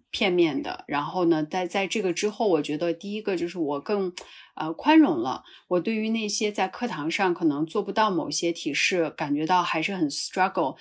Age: 30-49